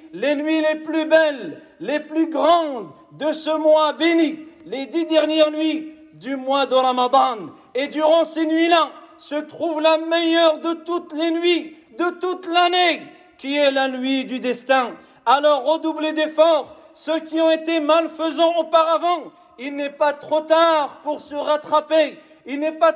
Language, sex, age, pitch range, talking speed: French, male, 50-69, 280-320 Hz, 165 wpm